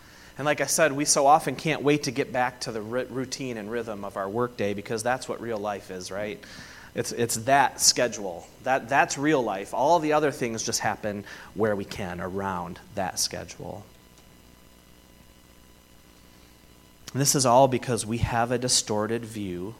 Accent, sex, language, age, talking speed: American, male, English, 30-49, 175 wpm